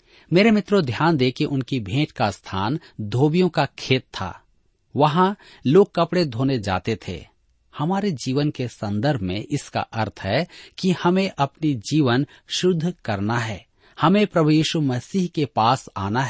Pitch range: 110-165 Hz